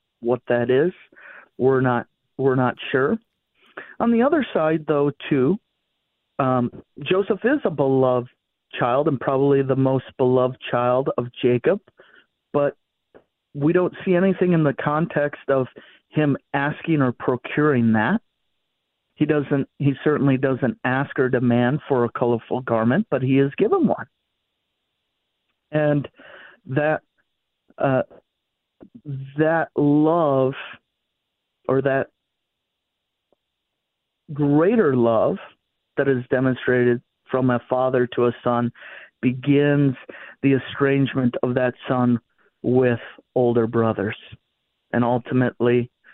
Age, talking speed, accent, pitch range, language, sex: 50-69, 115 wpm, American, 120-145 Hz, English, male